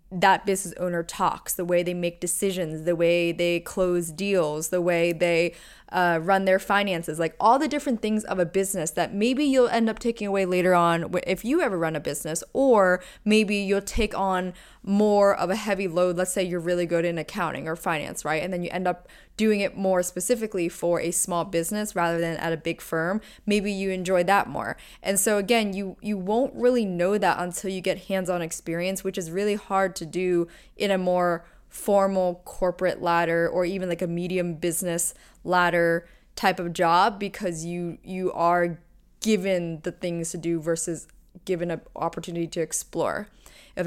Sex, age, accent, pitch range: female, 20-39, American, 170-195 Hz